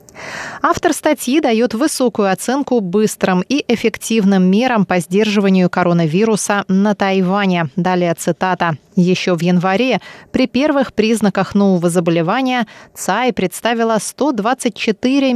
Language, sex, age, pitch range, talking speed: Russian, female, 20-39, 185-240 Hz, 105 wpm